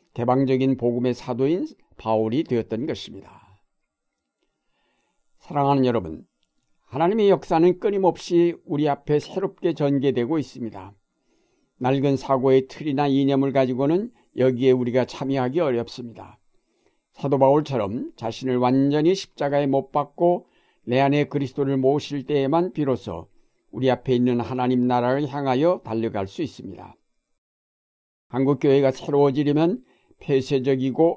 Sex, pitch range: male, 125-150 Hz